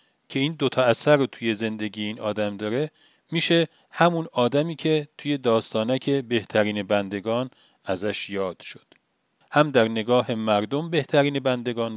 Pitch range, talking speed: 110-150 Hz, 135 wpm